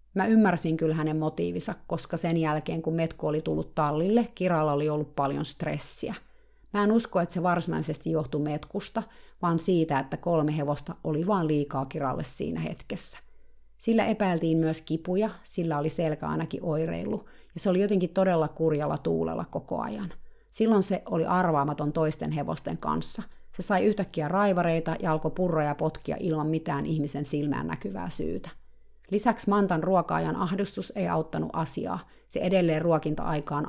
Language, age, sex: Finnish, 30-49, female